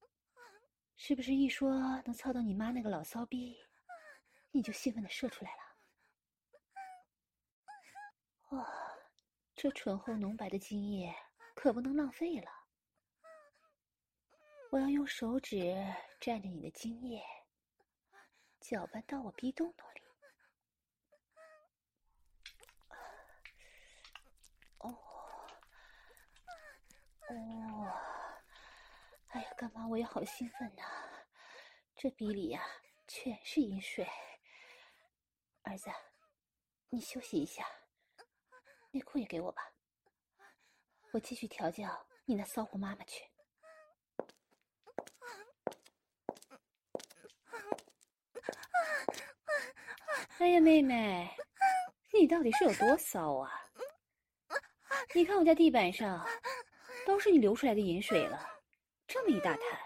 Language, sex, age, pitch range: English, female, 20-39, 230-355 Hz